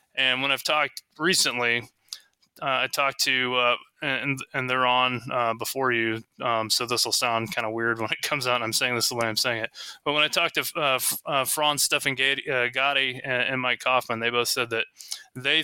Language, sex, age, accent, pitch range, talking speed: English, male, 20-39, American, 115-130 Hz, 225 wpm